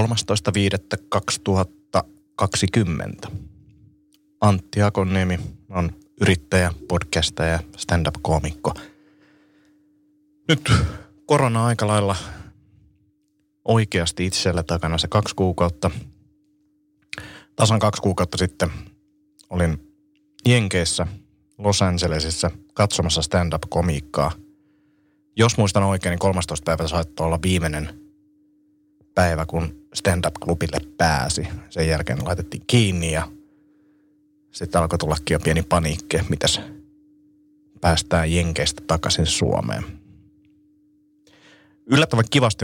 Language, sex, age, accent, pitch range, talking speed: Finnish, male, 30-49, native, 85-120 Hz, 80 wpm